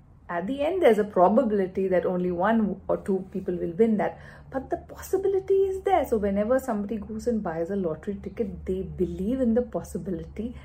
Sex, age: female, 50-69